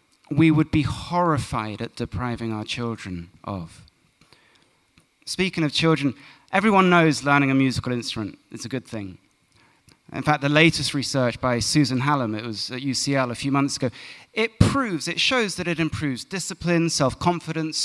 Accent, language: British, English